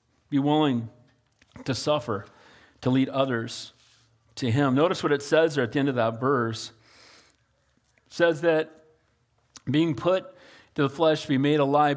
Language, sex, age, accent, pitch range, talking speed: English, male, 40-59, American, 145-245 Hz, 155 wpm